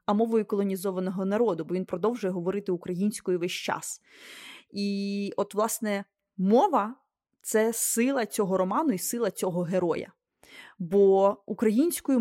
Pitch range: 195-240 Hz